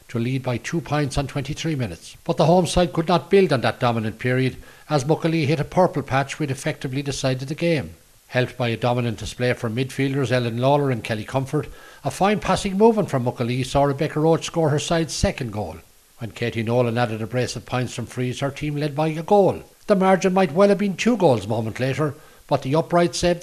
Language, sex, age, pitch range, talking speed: English, male, 60-79, 120-170 Hz, 225 wpm